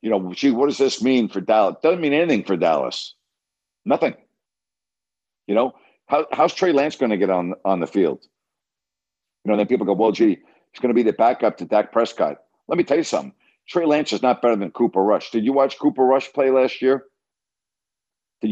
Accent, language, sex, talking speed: American, English, male, 215 wpm